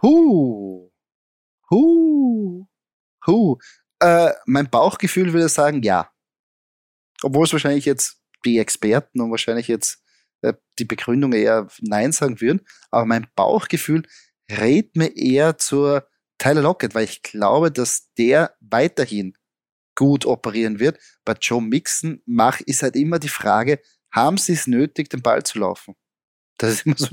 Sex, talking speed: male, 130 wpm